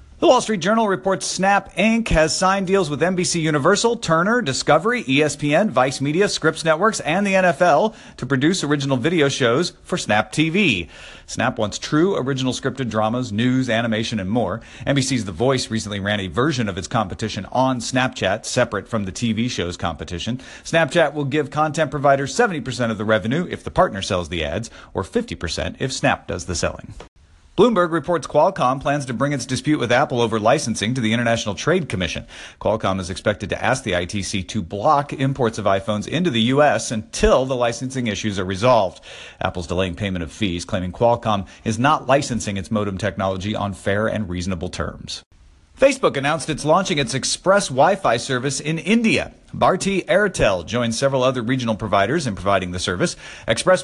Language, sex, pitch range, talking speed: English, male, 105-150 Hz, 175 wpm